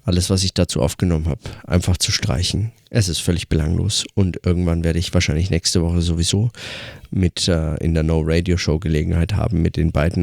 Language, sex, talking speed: German, male, 175 wpm